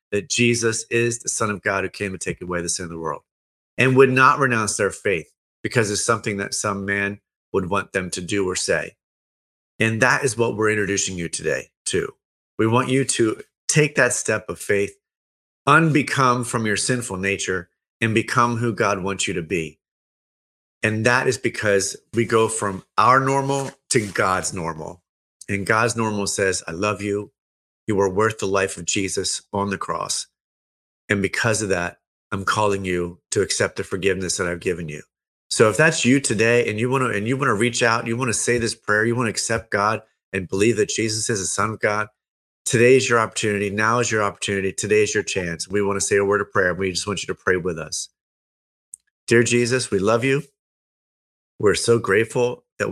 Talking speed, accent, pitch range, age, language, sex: 210 wpm, American, 95-120 Hz, 30-49, English, male